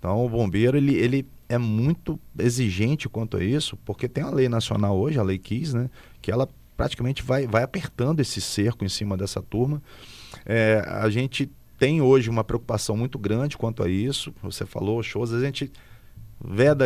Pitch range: 105-140 Hz